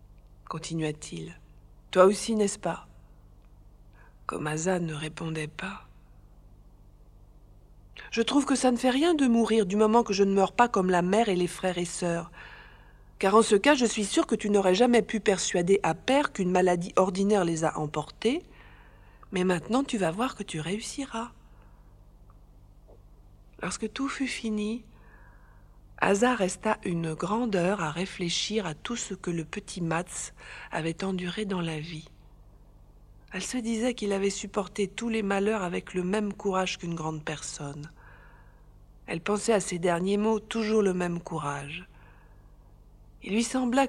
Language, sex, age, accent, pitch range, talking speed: French, female, 50-69, French, 155-220 Hz, 165 wpm